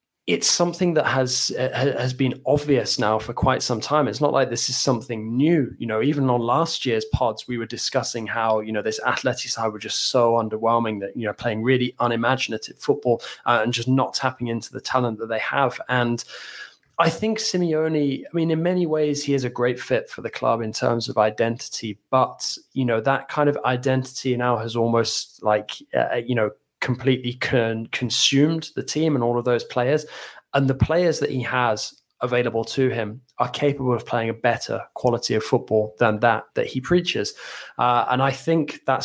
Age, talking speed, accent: 20-39, 200 wpm, British